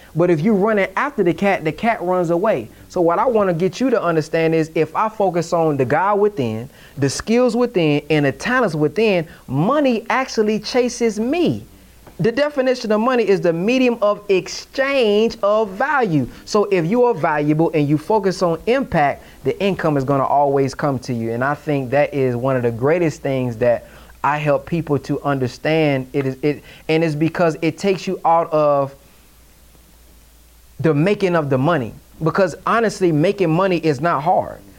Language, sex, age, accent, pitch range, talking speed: English, male, 30-49, American, 145-195 Hz, 190 wpm